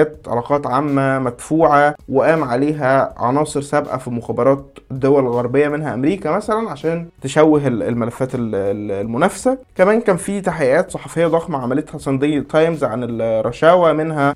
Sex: male